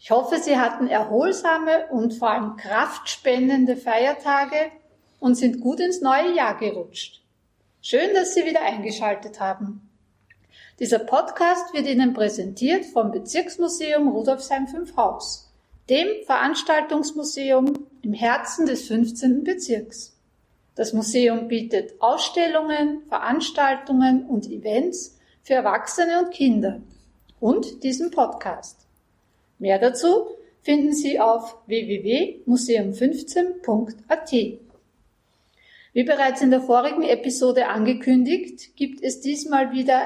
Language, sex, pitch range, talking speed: German, female, 230-300 Hz, 105 wpm